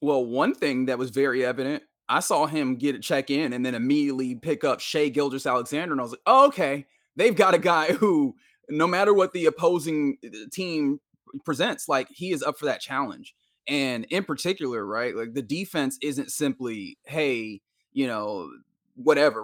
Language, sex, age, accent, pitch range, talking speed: English, male, 20-39, American, 130-155 Hz, 180 wpm